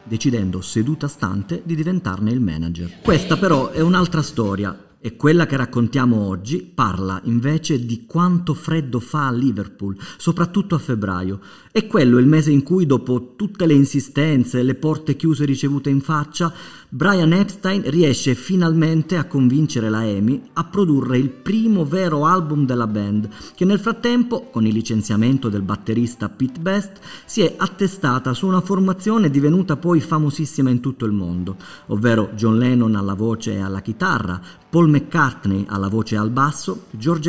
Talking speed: 160 wpm